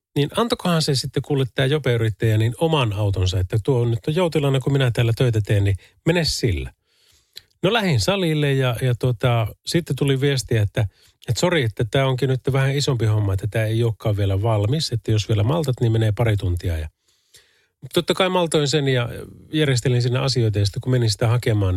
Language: Finnish